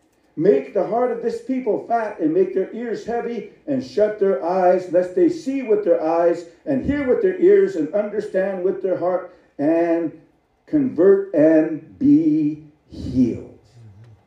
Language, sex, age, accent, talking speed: English, male, 50-69, American, 155 wpm